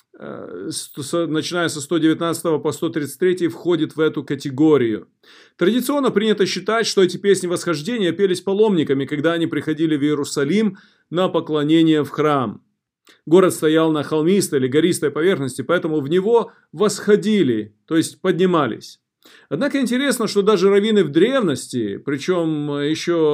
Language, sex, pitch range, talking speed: Russian, male, 155-200 Hz, 130 wpm